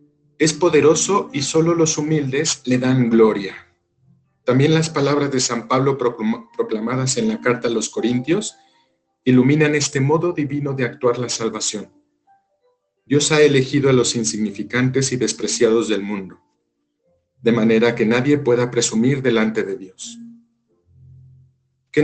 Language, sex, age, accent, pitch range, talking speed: Spanish, male, 50-69, Mexican, 115-150 Hz, 135 wpm